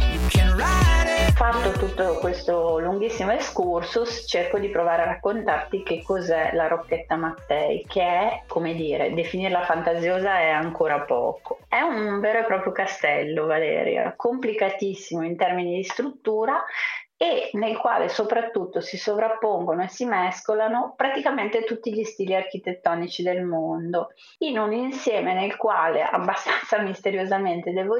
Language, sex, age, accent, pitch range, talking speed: Italian, female, 30-49, native, 175-220 Hz, 130 wpm